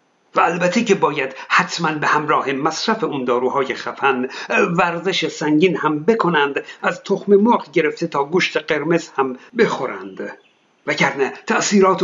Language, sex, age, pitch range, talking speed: Persian, male, 50-69, 160-205 Hz, 130 wpm